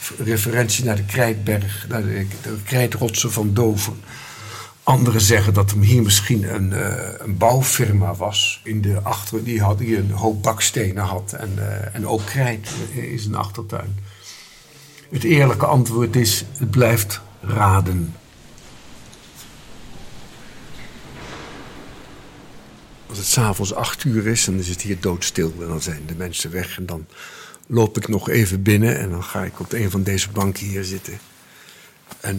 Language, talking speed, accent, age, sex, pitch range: Dutch, 150 wpm, Dutch, 60-79, male, 100-115 Hz